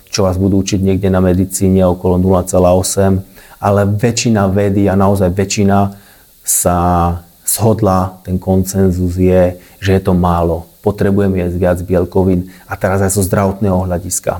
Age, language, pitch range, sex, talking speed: 30-49, Slovak, 90-100 Hz, male, 145 wpm